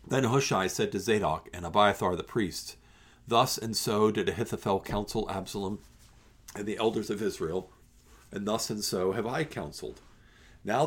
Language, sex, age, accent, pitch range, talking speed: English, male, 50-69, American, 100-140 Hz, 160 wpm